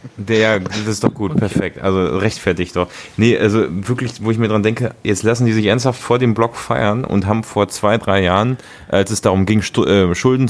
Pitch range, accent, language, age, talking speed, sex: 95-110 Hz, German, German, 30-49, 225 wpm, male